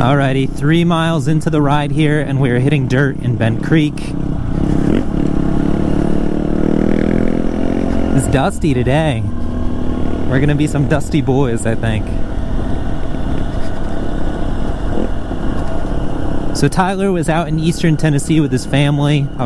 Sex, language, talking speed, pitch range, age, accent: male, English, 110 wpm, 110-150 Hz, 30-49, American